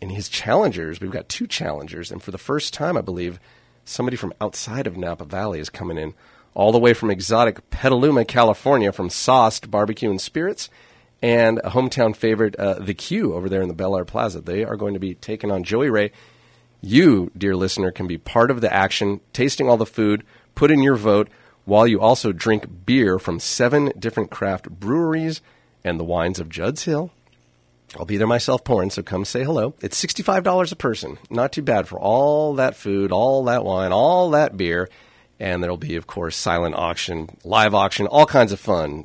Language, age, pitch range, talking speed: English, 40-59, 95-120 Hz, 200 wpm